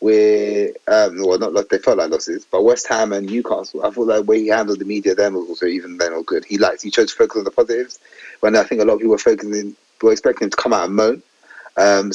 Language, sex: English, male